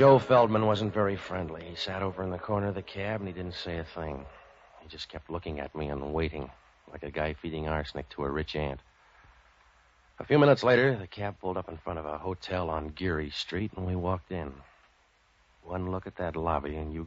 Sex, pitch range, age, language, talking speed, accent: male, 75-90 Hz, 60-79, English, 225 wpm, American